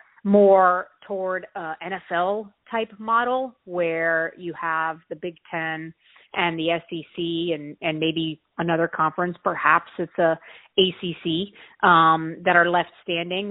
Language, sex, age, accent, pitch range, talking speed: English, female, 30-49, American, 165-190 Hz, 130 wpm